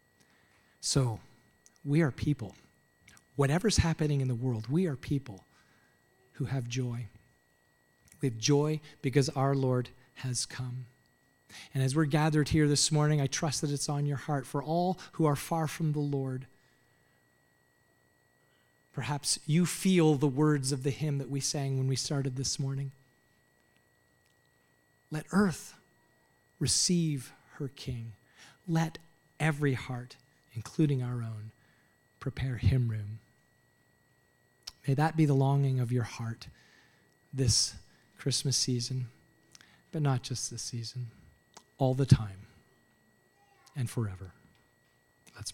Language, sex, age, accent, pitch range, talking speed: English, male, 40-59, American, 115-145 Hz, 130 wpm